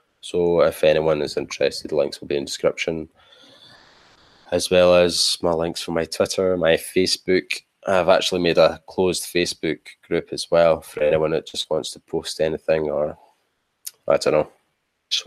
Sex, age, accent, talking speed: male, 20-39, British, 175 wpm